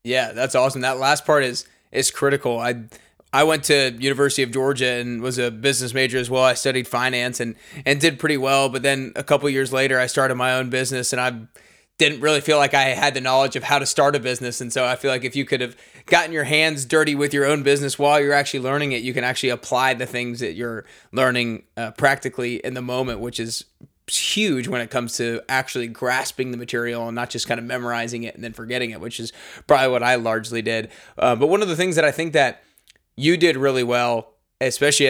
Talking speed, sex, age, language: 240 wpm, male, 20-39, English